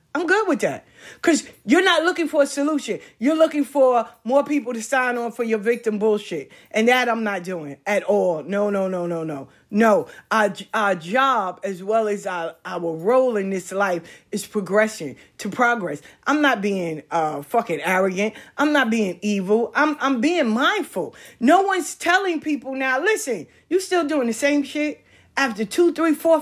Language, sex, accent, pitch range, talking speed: English, female, American, 190-295 Hz, 185 wpm